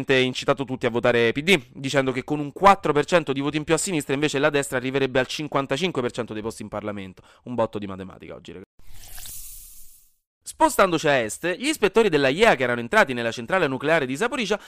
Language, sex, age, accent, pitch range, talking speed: Italian, male, 30-49, native, 125-175 Hz, 195 wpm